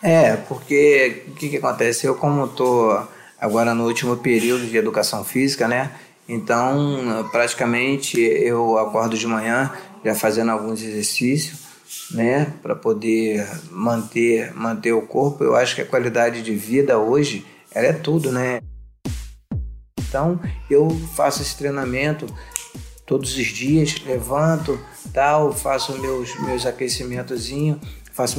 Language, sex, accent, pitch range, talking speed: Portuguese, male, Brazilian, 120-145 Hz, 130 wpm